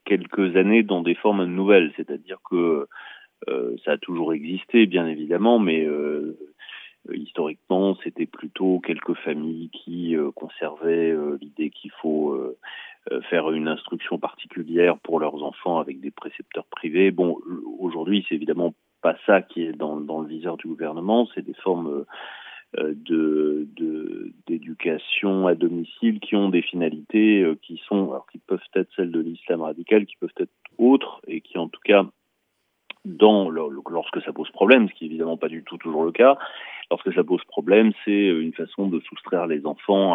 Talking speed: 170 wpm